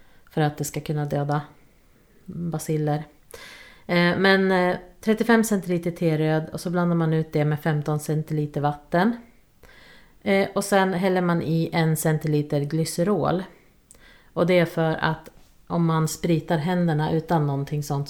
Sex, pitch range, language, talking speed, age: female, 155-180 Hz, Swedish, 135 wpm, 30-49